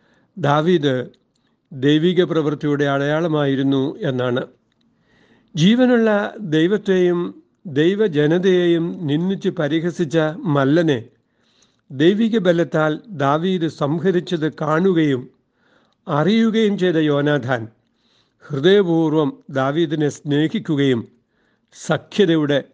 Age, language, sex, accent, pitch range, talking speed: 60-79, Malayalam, male, native, 140-170 Hz, 60 wpm